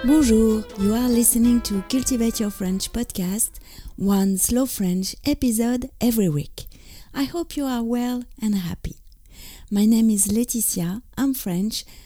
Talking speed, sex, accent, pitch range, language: 140 wpm, female, French, 180-240 Hz, English